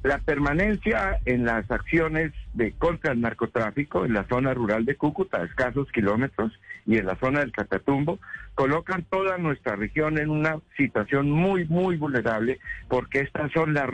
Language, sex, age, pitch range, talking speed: Spanish, male, 60-79, 115-150 Hz, 165 wpm